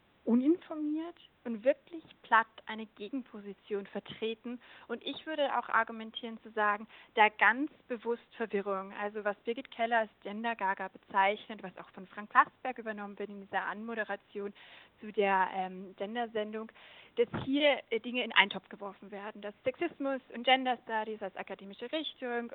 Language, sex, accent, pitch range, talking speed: German, female, German, 205-260 Hz, 150 wpm